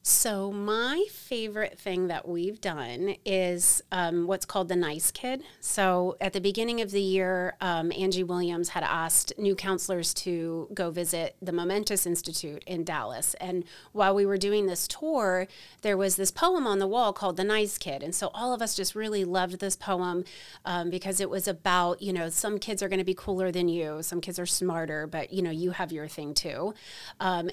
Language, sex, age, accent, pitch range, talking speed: English, female, 30-49, American, 180-210 Hz, 205 wpm